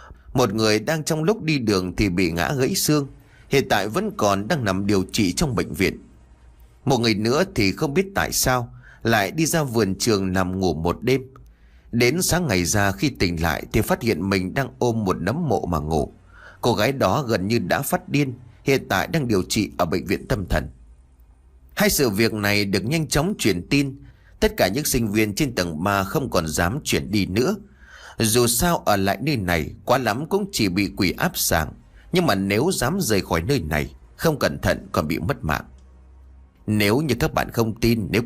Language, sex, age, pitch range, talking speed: English, male, 30-49, 95-135 Hz, 210 wpm